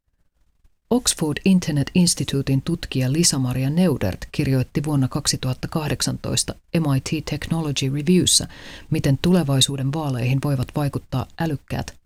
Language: Finnish